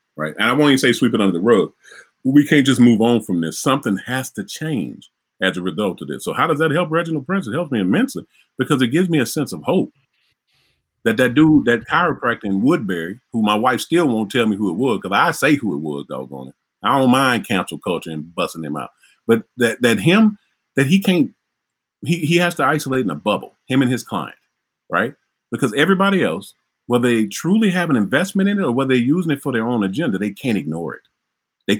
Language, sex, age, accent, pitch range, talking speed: English, male, 40-59, American, 105-175 Hz, 235 wpm